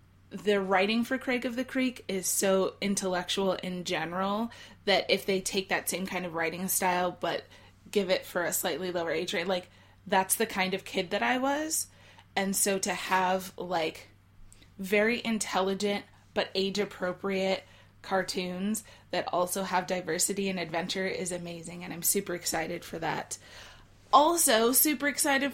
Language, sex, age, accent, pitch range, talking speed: English, female, 20-39, American, 180-240 Hz, 155 wpm